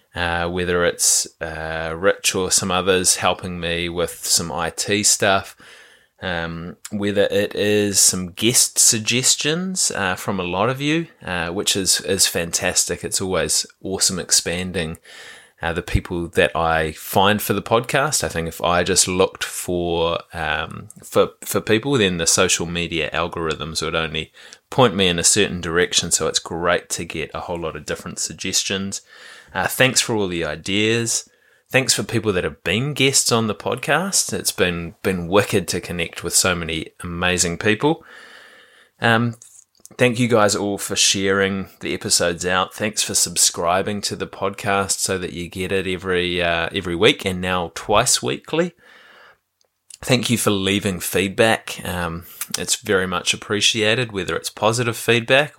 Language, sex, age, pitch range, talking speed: English, male, 20-39, 85-110 Hz, 160 wpm